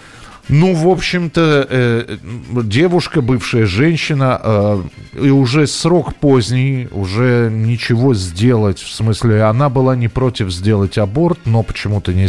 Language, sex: Russian, male